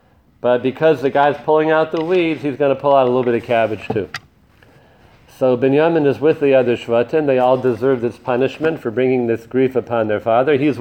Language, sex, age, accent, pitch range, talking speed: English, male, 40-59, American, 125-155 Hz, 215 wpm